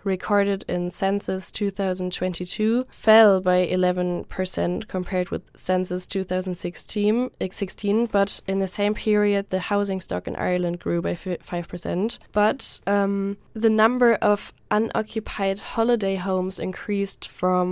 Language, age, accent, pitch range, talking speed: English, 20-39, German, 180-205 Hz, 115 wpm